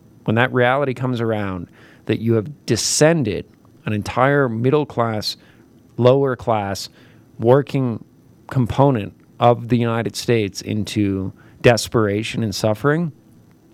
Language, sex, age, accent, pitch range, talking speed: English, male, 40-59, American, 110-130 Hz, 110 wpm